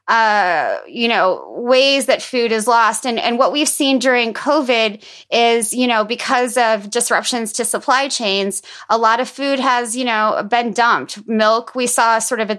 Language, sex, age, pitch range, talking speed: English, female, 20-39, 215-260 Hz, 185 wpm